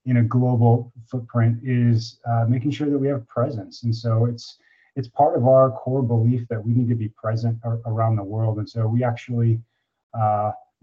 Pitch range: 110-125 Hz